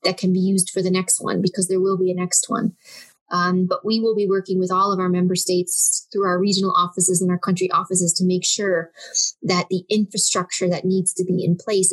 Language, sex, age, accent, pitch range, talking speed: English, female, 20-39, American, 180-200 Hz, 235 wpm